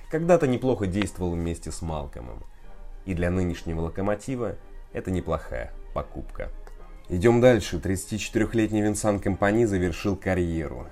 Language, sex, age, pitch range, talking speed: Russian, male, 30-49, 80-105 Hz, 110 wpm